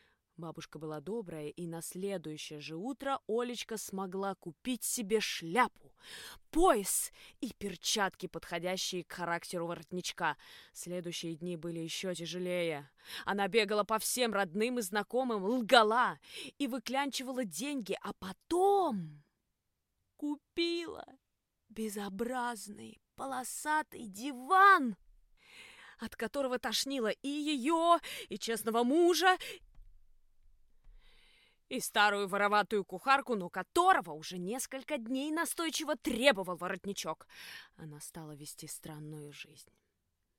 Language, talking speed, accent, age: Russian, 100 wpm, native, 20-39